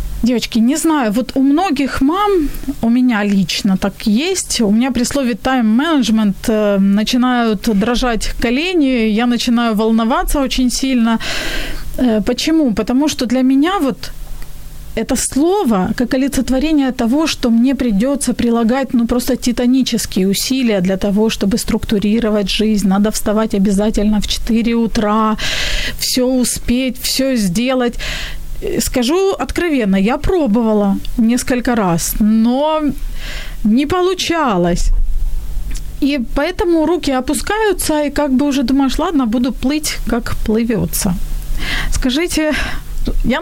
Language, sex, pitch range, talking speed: Ukrainian, female, 215-275 Hz, 115 wpm